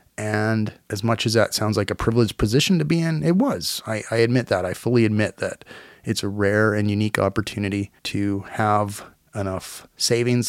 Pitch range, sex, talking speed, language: 100-120 Hz, male, 190 wpm, English